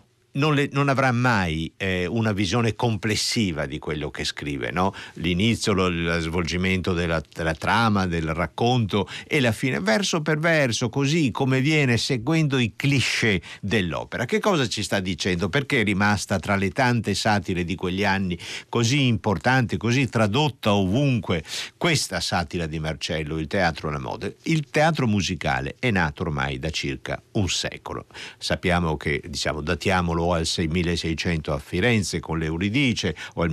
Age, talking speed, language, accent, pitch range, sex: 60-79, 155 wpm, Italian, native, 85-120 Hz, male